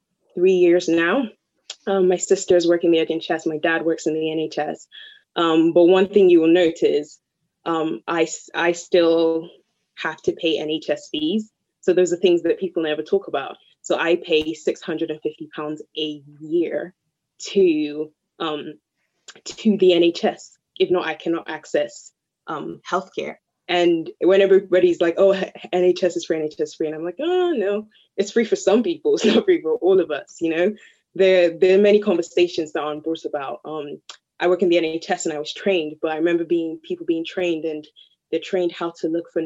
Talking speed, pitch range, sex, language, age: 190 wpm, 160-195 Hz, female, English, 20-39